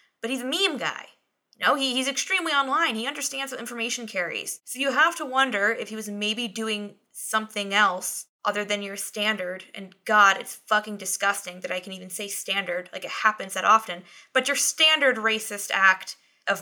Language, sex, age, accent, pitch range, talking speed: English, female, 20-39, American, 190-240 Hz, 190 wpm